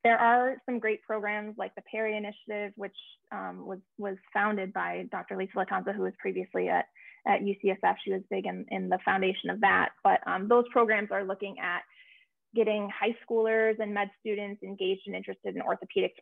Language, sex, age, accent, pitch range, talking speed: English, female, 20-39, American, 200-235 Hz, 190 wpm